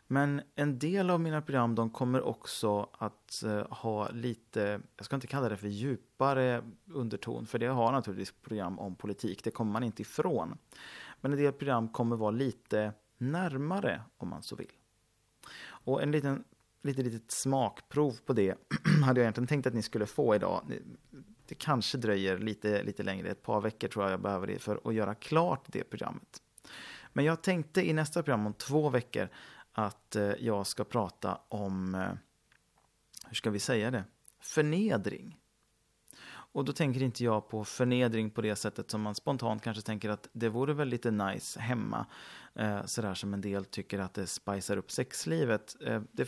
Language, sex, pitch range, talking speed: Swedish, male, 105-135 Hz, 170 wpm